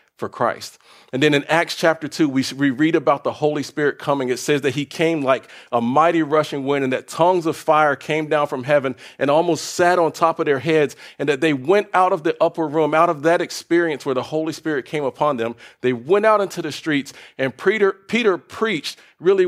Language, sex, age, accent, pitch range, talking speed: English, male, 40-59, American, 140-170 Hz, 225 wpm